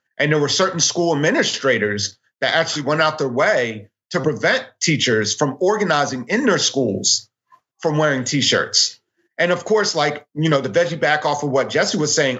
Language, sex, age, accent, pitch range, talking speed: English, male, 40-59, American, 135-180 Hz, 185 wpm